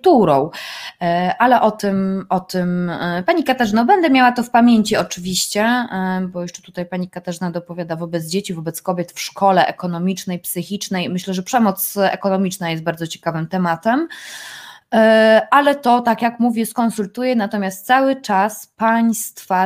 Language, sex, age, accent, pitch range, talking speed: Polish, female, 20-39, native, 175-215 Hz, 135 wpm